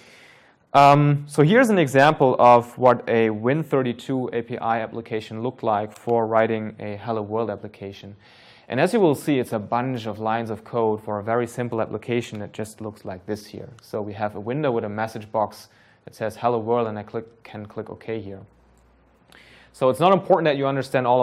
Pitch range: 110-125 Hz